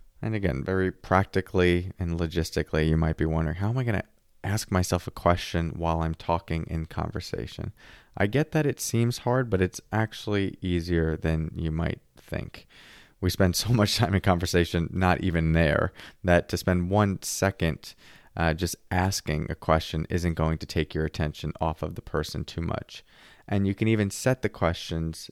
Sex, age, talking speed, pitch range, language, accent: male, 20-39, 185 wpm, 80-115 Hz, English, American